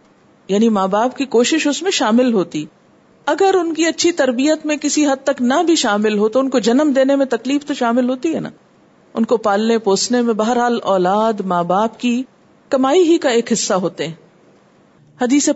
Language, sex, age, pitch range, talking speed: Urdu, female, 50-69, 215-280 Hz, 200 wpm